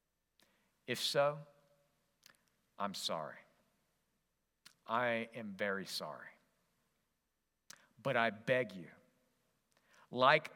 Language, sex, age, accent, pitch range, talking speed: English, male, 50-69, American, 125-170 Hz, 75 wpm